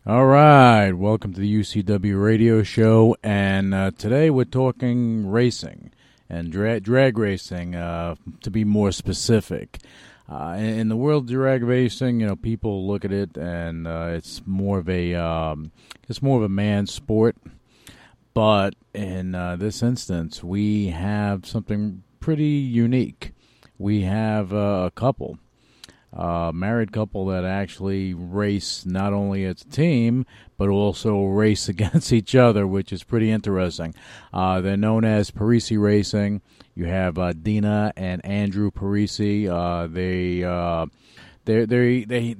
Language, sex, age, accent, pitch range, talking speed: English, male, 40-59, American, 95-115 Hz, 145 wpm